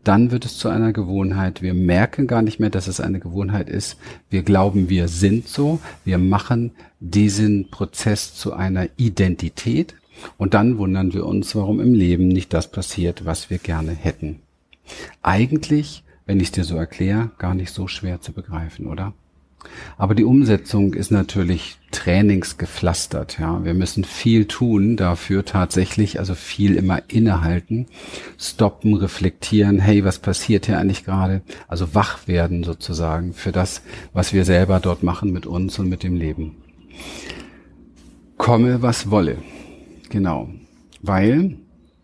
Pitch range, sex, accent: 85-105 Hz, male, German